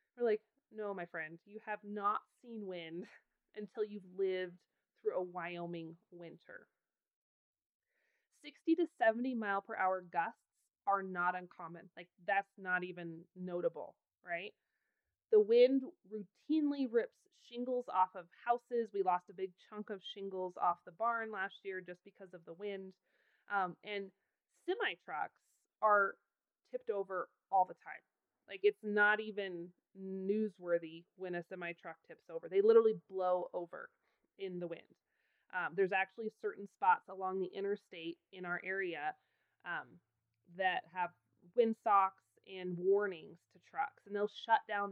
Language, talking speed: English, 145 wpm